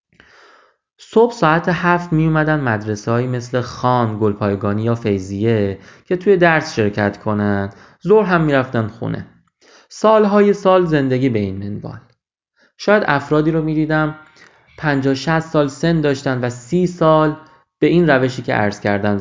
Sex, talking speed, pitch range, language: male, 150 wpm, 110-160 Hz, English